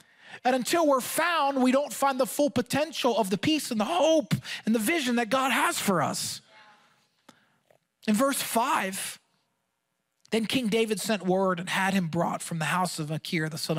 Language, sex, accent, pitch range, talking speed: English, male, American, 155-240 Hz, 185 wpm